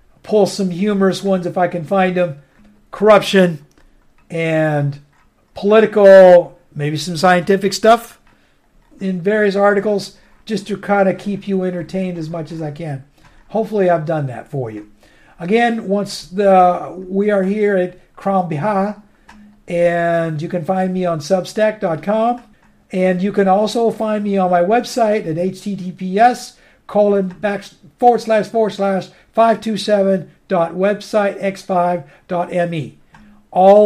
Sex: male